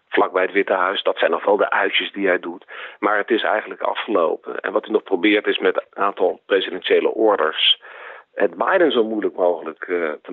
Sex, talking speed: male, 210 wpm